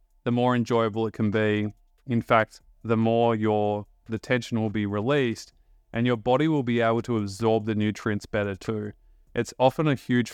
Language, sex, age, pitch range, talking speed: English, male, 20-39, 100-115 Hz, 185 wpm